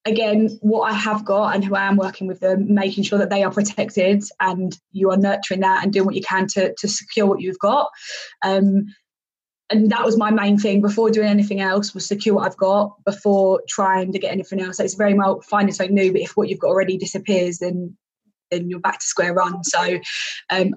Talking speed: 230 wpm